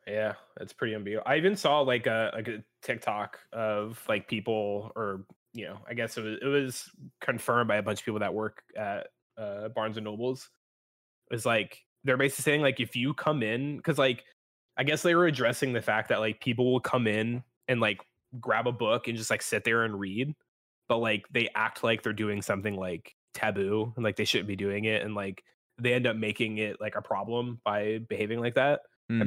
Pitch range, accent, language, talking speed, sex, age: 110-130 Hz, American, English, 215 wpm, male, 20-39